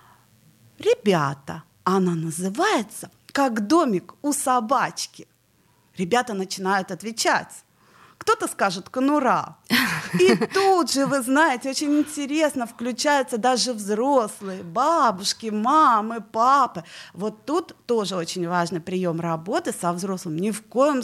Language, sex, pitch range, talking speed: Russian, female, 190-270 Hz, 110 wpm